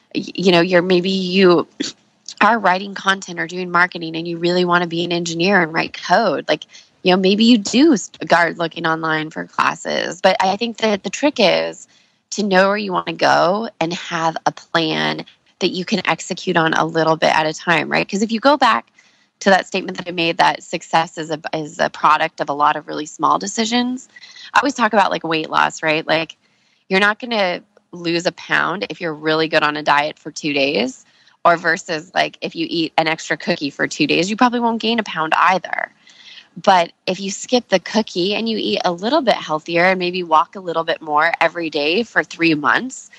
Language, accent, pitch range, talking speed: English, American, 165-210 Hz, 220 wpm